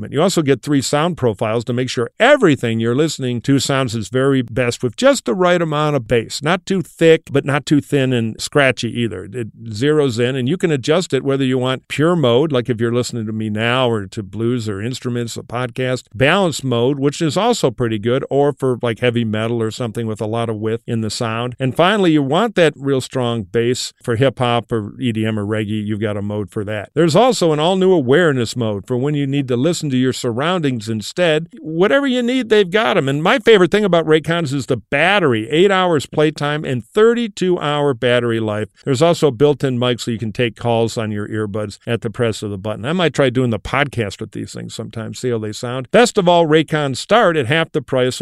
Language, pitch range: English, 115-165 Hz